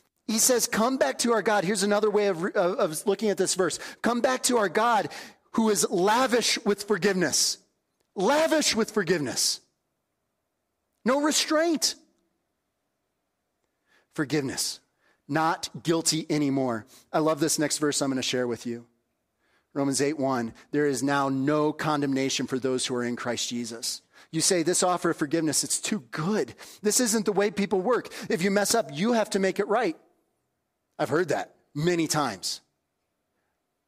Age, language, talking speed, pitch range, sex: 30-49, English, 165 wpm, 135-200 Hz, male